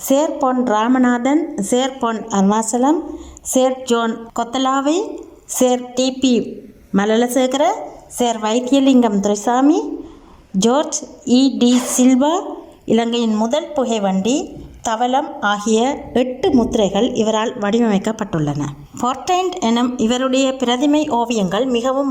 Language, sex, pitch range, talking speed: Tamil, female, 220-270 Hz, 90 wpm